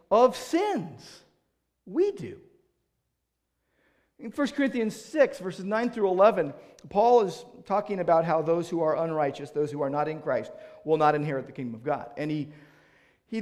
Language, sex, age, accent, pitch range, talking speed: English, male, 40-59, American, 150-240 Hz, 165 wpm